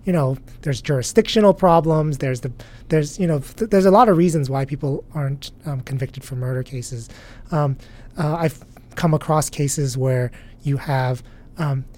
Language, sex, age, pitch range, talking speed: English, male, 30-49, 130-160 Hz, 170 wpm